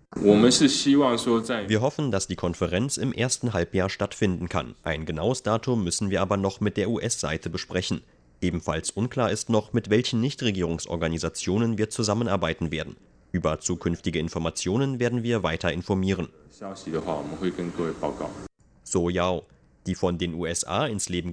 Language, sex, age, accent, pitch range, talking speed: German, male, 30-49, German, 85-120 Hz, 125 wpm